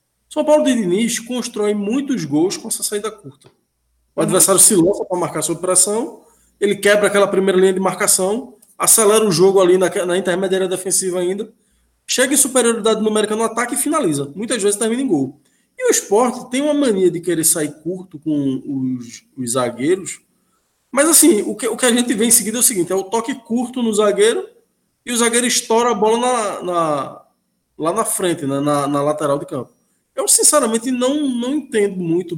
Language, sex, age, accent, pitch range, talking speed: Portuguese, male, 20-39, Brazilian, 150-240 Hz, 185 wpm